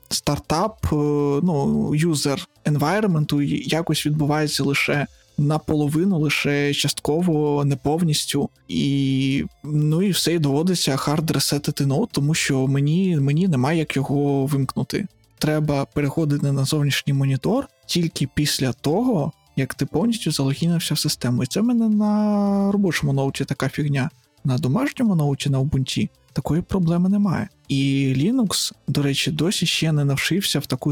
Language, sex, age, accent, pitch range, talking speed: Ukrainian, male, 20-39, native, 140-165 Hz, 135 wpm